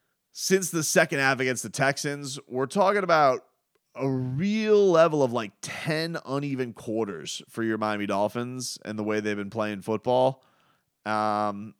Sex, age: male, 30-49